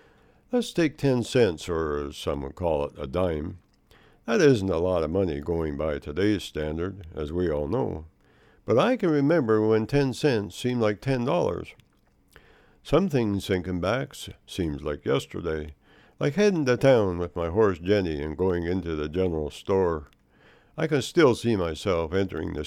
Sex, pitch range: male, 80-120 Hz